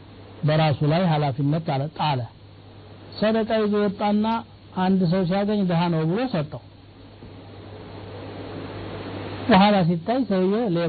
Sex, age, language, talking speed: male, 60-79, Amharic, 95 wpm